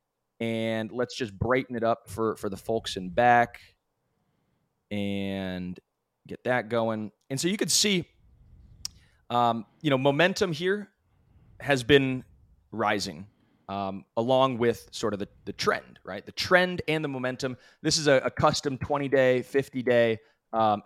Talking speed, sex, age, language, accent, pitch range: 145 wpm, male, 20-39, English, American, 115-145 Hz